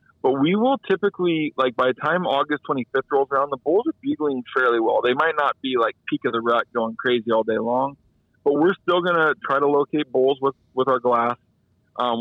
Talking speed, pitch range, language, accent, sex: 225 wpm, 115-135 Hz, English, American, male